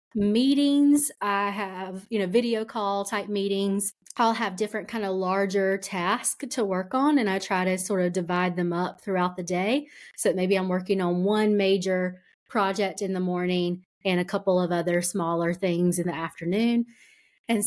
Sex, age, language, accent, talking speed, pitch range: female, 30-49, English, American, 180 wpm, 185-225 Hz